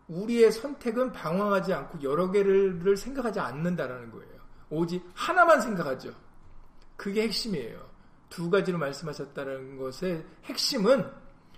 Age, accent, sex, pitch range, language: 40-59, native, male, 155-225 Hz, Korean